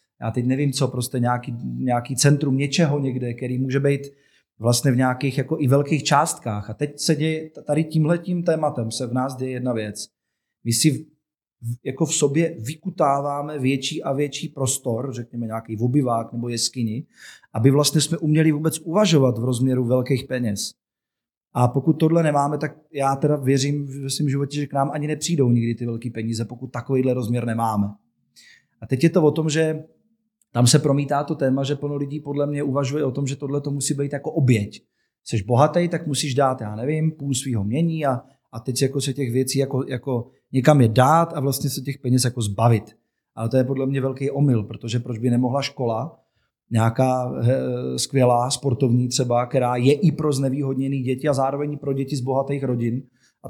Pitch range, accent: 120-145 Hz, native